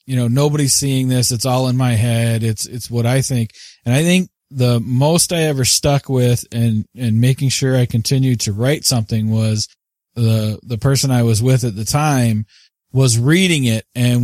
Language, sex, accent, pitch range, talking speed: English, male, American, 110-135 Hz, 200 wpm